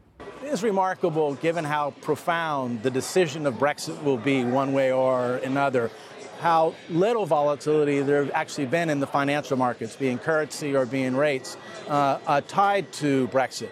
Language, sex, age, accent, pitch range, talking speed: English, male, 50-69, American, 130-160 Hz, 155 wpm